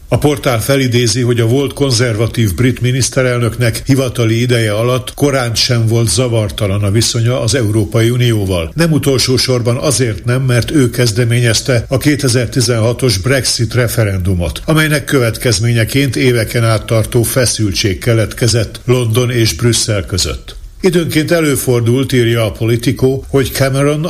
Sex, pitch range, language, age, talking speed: male, 110-130 Hz, Hungarian, 60-79, 120 wpm